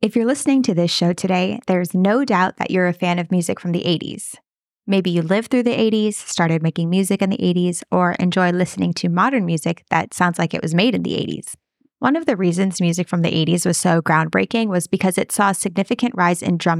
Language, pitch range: English, 175-205 Hz